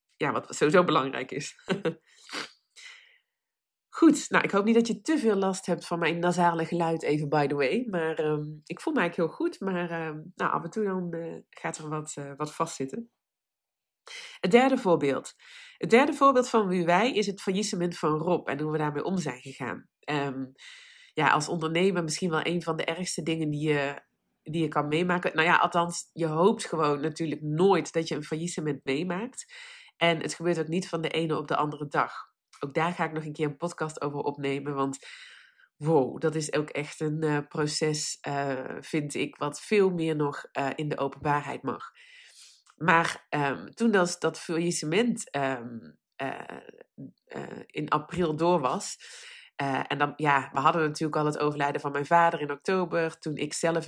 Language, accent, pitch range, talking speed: Dutch, Dutch, 150-180 Hz, 190 wpm